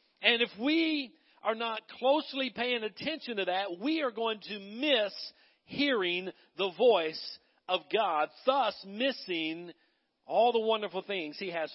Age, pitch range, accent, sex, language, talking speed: 50-69, 185-255 Hz, American, male, English, 145 wpm